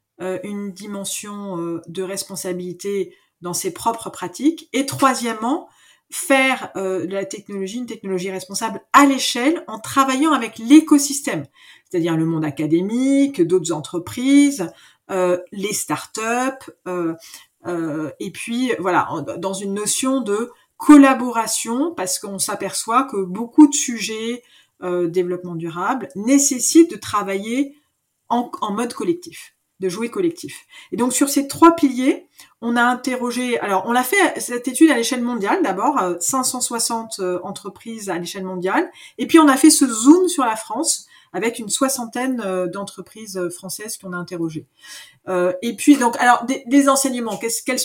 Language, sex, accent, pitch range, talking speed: French, female, French, 185-270 Hz, 135 wpm